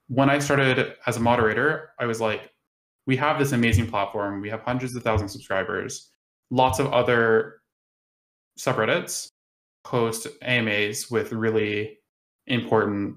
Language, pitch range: English, 105-125 Hz